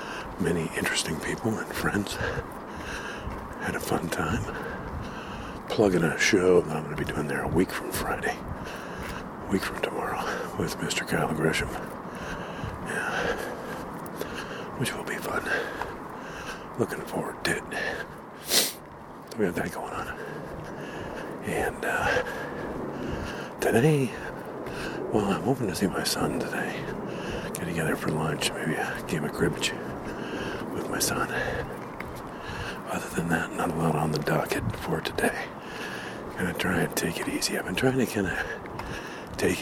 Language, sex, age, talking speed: English, male, 50-69, 140 wpm